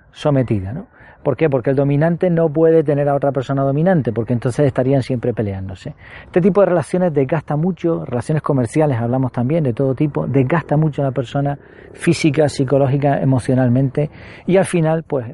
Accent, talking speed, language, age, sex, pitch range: Argentinian, 170 wpm, Spanish, 40-59, male, 130-170 Hz